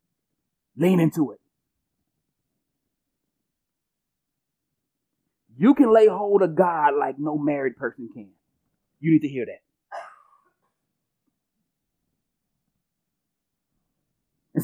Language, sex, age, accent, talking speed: English, male, 30-49, American, 80 wpm